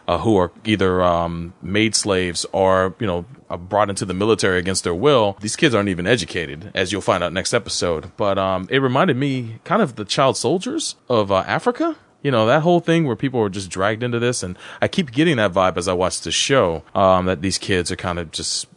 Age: 30-49